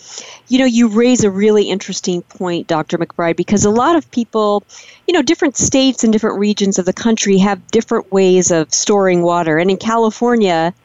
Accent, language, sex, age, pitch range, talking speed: American, English, female, 40-59, 185-230 Hz, 190 wpm